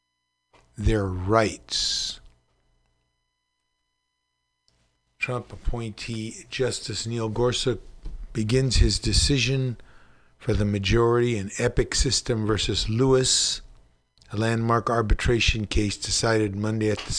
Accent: American